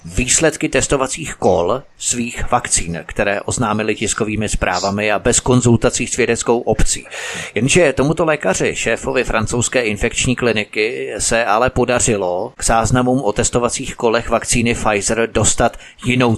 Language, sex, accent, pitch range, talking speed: Czech, male, native, 110-135 Hz, 125 wpm